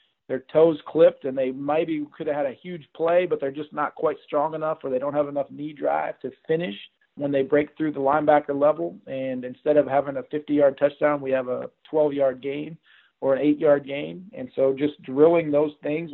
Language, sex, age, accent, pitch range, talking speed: English, male, 40-59, American, 135-155 Hz, 225 wpm